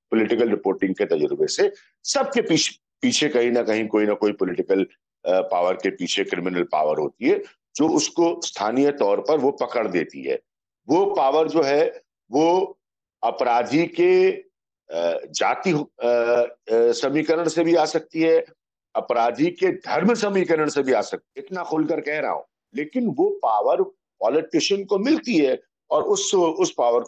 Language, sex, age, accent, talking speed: Hindi, male, 50-69, native, 155 wpm